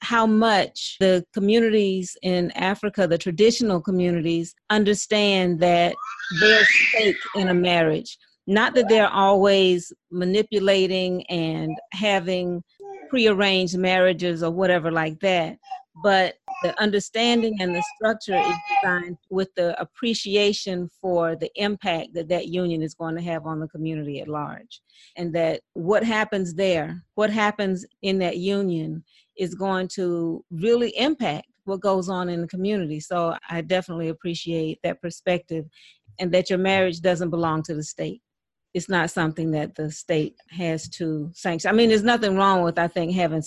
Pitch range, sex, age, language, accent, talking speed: 165-200 Hz, female, 40-59, English, American, 150 wpm